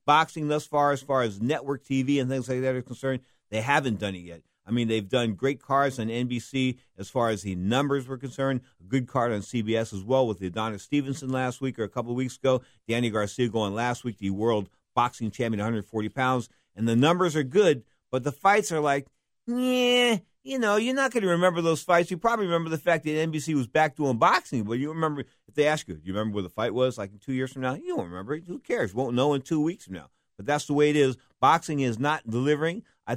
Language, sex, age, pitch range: English, male, 50-69, 115-150 Hz